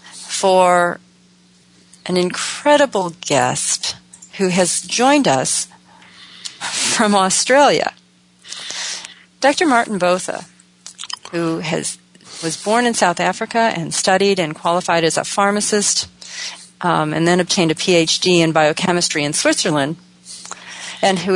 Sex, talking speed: female, 110 wpm